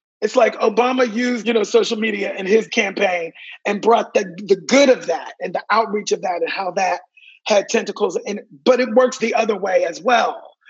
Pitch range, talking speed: 205-305 Hz, 210 wpm